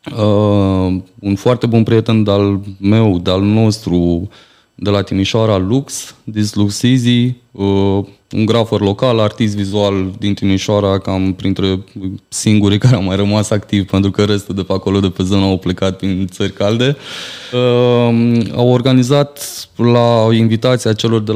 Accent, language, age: native, Romanian, 20-39